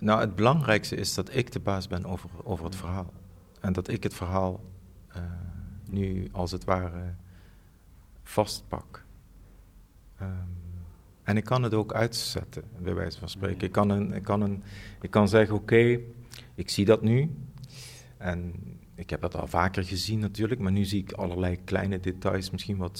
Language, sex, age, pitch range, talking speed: Dutch, male, 50-69, 90-105 Hz, 155 wpm